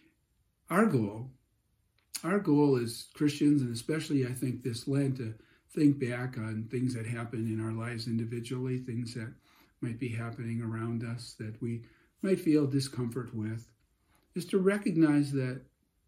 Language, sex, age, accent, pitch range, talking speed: English, male, 50-69, American, 125-155 Hz, 150 wpm